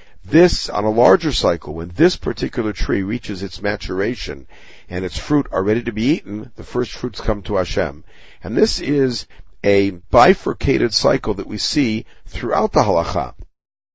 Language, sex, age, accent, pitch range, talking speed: English, male, 50-69, American, 90-110 Hz, 165 wpm